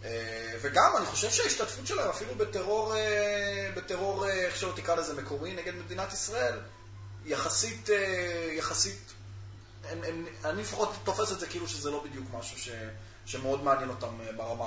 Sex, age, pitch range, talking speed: male, 20-39, 105-135 Hz, 160 wpm